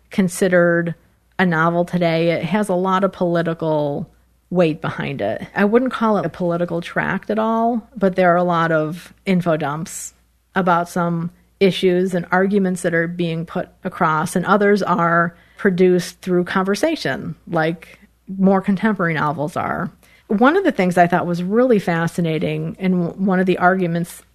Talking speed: 160 wpm